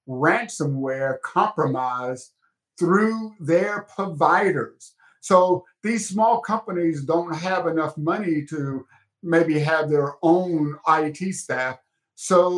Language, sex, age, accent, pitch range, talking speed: English, male, 50-69, American, 145-180 Hz, 100 wpm